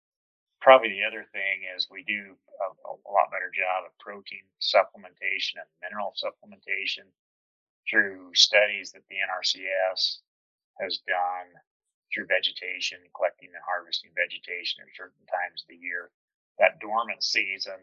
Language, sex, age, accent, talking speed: English, male, 30-49, American, 135 wpm